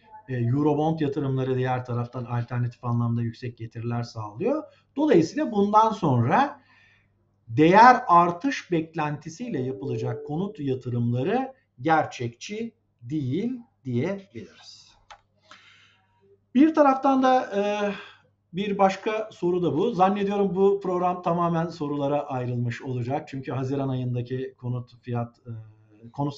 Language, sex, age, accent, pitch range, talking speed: Turkish, male, 50-69, native, 120-180 Hz, 100 wpm